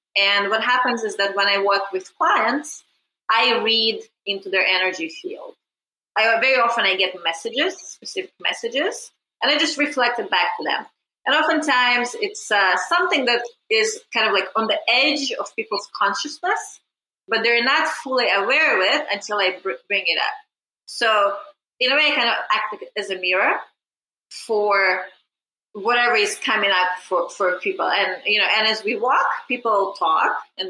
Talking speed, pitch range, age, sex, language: 175 wpm, 200-290 Hz, 30-49, female, English